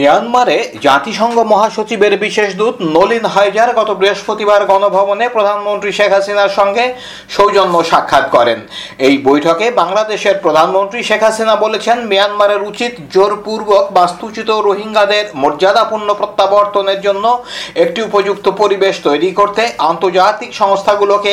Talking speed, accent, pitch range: 30 wpm, native, 185-220 Hz